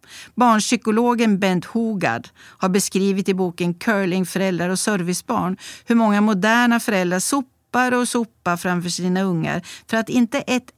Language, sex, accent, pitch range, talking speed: Swedish, female, native, 170-225 Hz, 140 wpm